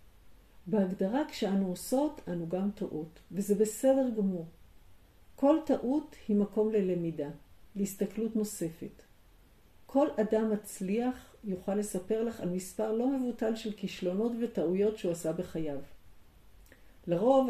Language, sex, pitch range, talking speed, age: Hebrew, female, 165-225 Hz, 115 wpm, 50-69